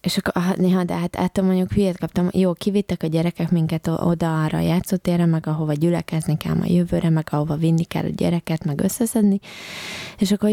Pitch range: 165-195 Hz